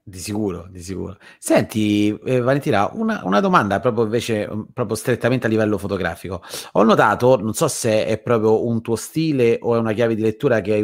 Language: Italian